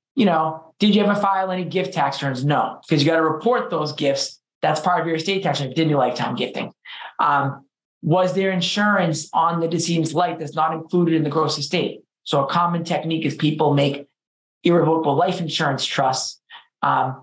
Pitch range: 145-185 Hz